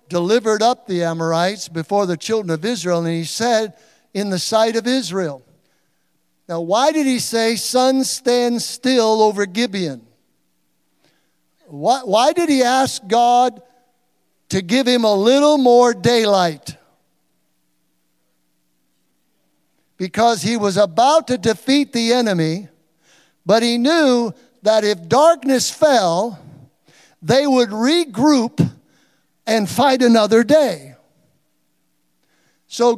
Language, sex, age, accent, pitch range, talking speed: English, male, 60-79, American, 185-260 Hz, 115 wpm